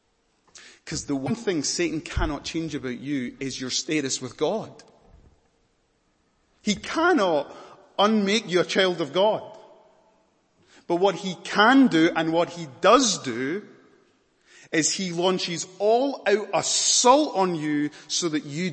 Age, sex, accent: 30-49, male, British